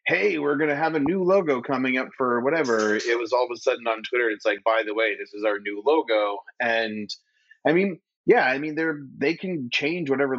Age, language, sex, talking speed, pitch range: 30-49, English, male, 235 wpm, 105-135 Hz